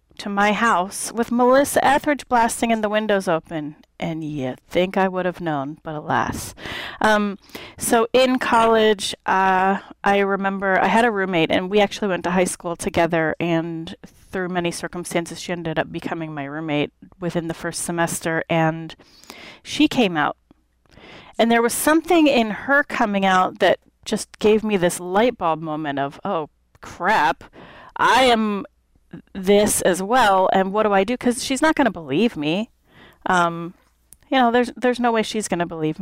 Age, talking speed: 30-49, 175 wpm